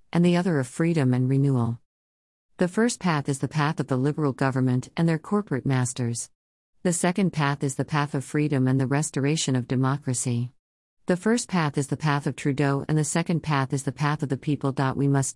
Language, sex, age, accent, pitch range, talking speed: English, female, 50-69, American, 130-170 Hz, 210 wpm